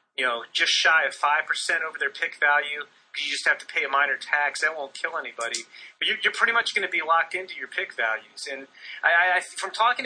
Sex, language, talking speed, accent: male, English, 245 wpm, American